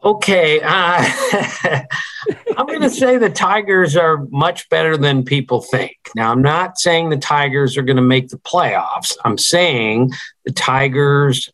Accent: American